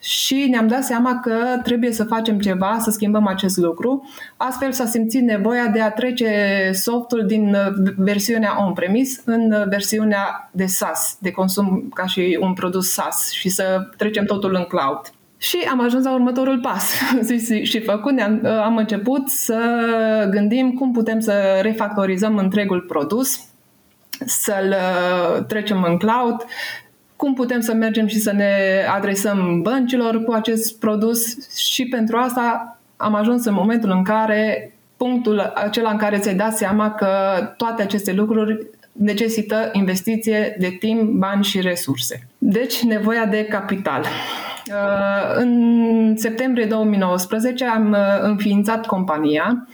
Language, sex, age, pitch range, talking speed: Romanian, female, 20-39, 195-230 Hz, 135 wpm